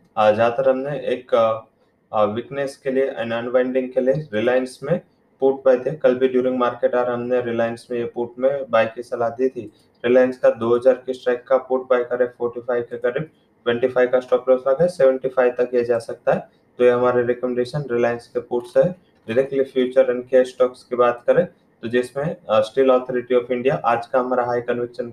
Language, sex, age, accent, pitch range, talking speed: English, male, 20-39, Indian, 125-135 Hz, 190 wpm